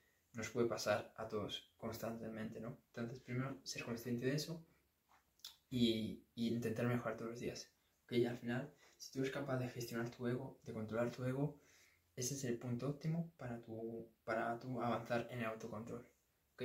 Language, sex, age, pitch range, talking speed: Spanish, male, 20-39, 115-135 Hz, 180 wpm